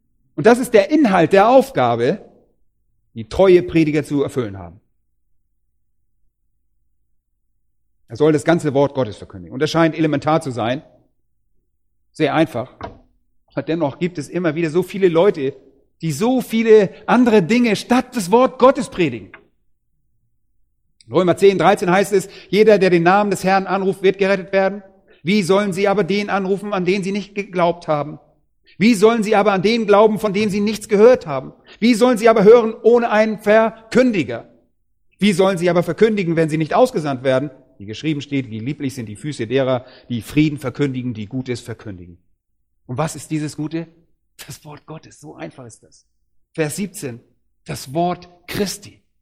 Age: 40-59